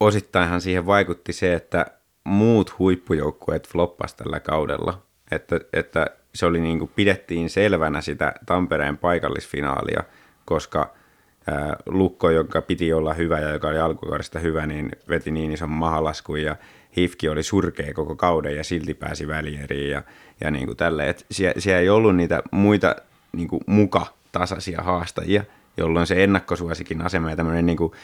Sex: male